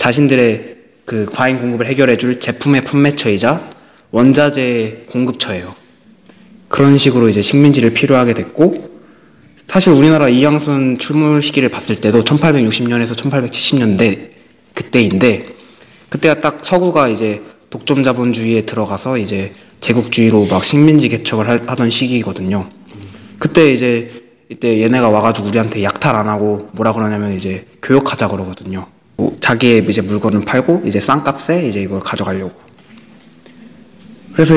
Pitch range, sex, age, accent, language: 110-145 Hz, male, 20-39, native, Korean